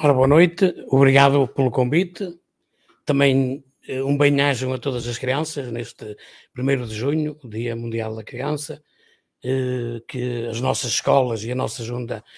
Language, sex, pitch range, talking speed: Portuguese, male, 130-150 Hz, 150 wpm